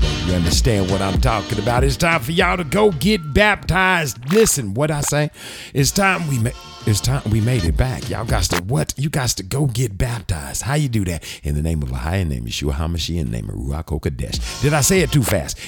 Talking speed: 240 wpm